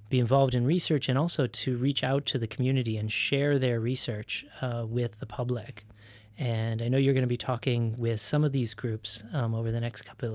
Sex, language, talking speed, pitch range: male, English, 220 wpm, 115-135 Hz